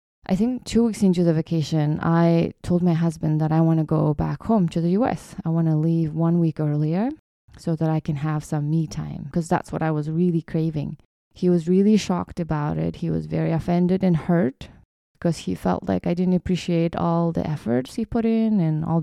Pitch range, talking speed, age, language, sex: 160-185 Hz, 220 wpm, 20-39, English, female